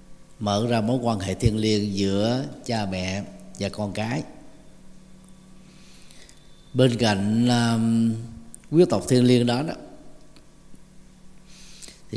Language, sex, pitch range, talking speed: Vietnamese, male, 100-145 Hz, 115 wpm